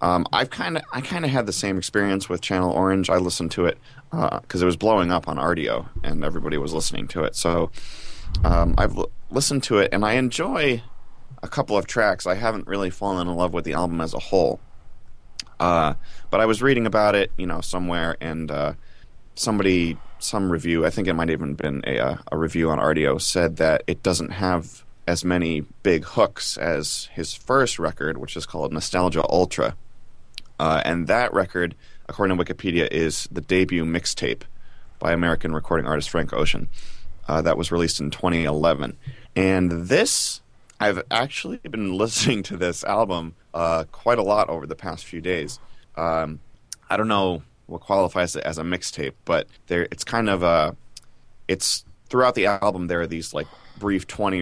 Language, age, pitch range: English, 20-39, 80-100 Hz